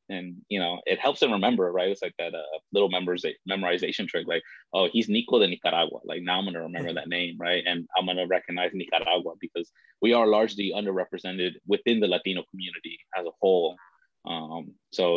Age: 20-39